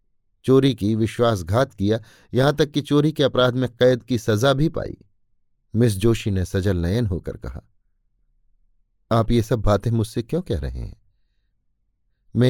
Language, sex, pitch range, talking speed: Hindi, male, 100-125 Hz, 160 wpm